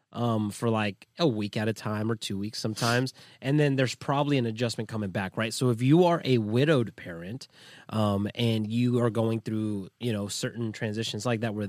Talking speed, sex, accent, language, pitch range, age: 210 wpm, male, American, English, 110-145 Hz, 30-49